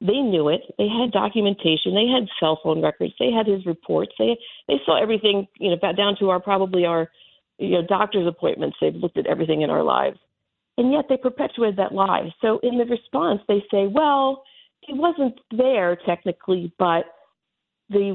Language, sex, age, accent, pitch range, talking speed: English, female, 50-69, American, 180-250 Hz, 185 wpm